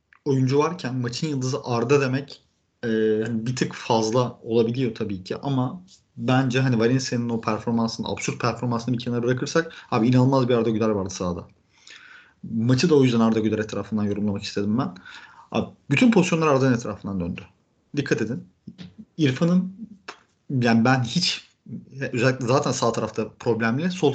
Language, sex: Turkish, male